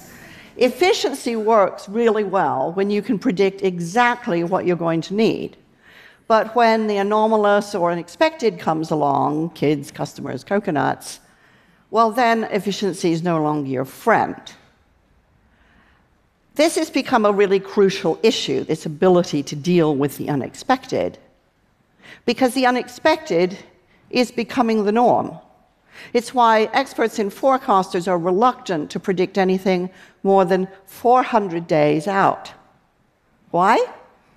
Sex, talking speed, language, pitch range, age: female, 120 wpm, Russian, 175-245 Hz, 50-69